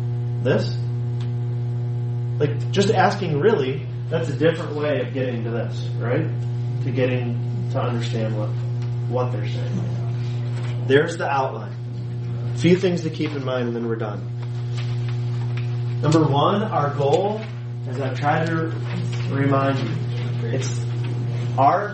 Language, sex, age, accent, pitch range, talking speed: English, male, 30-49, American, 120-130 Hz, 125 wpm